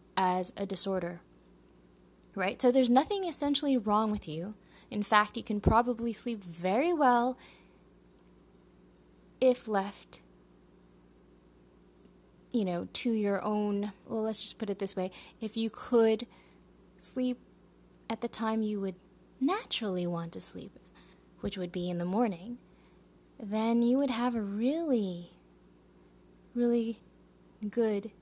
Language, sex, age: English, female, 10-29